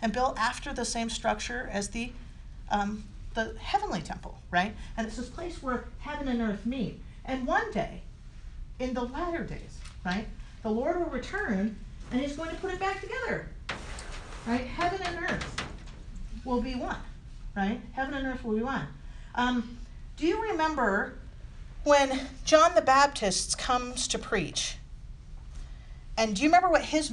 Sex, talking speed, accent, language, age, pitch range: female, 160 wpm, American, English, 40-59, 220-295 Hz